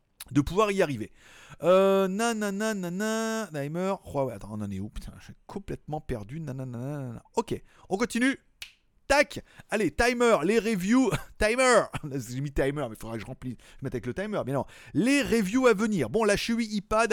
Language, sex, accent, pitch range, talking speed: French, male, French, 130-210 Hz, 195 wpm